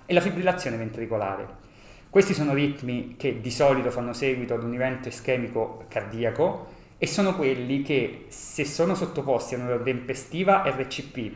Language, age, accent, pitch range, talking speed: Italian, 30-49, native, 115-150 Hz, 150 wpm